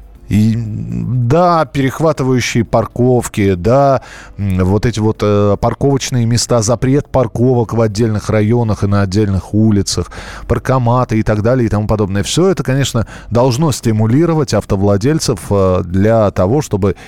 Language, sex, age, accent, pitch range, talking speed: Russian, male, 20-39, native, 100-135 Hz, 130 wpm